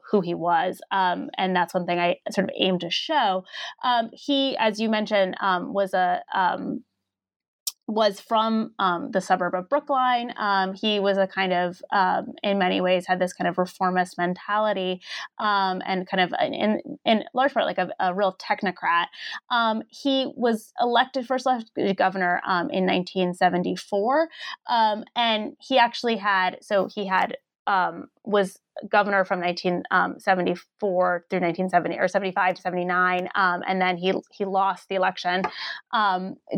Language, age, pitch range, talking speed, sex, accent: English, 20-39, 180-215 Hz, 160 wpm, female, American